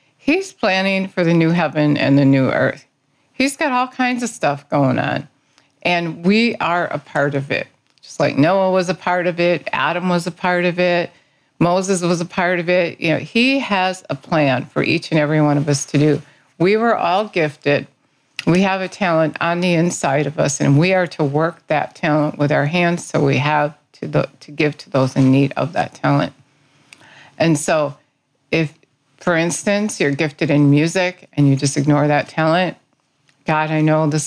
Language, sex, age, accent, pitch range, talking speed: English, female, 50-69, American, 145-180 Hz, 200 wpm